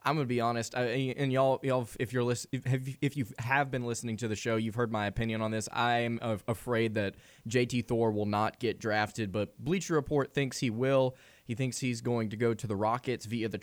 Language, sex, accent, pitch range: English, male, American, 110-135 Hz